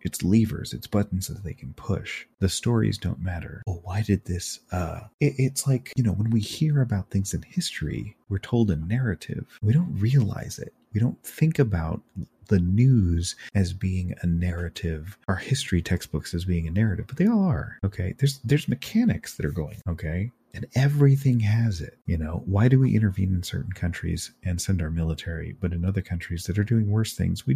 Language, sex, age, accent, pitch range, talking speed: English, male, 30-49, American, 90-125 Hz, 200 wpm